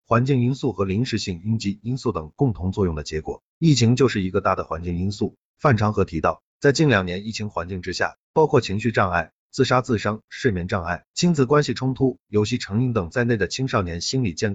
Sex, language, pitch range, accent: male, Chinese, 95-130 Hz, native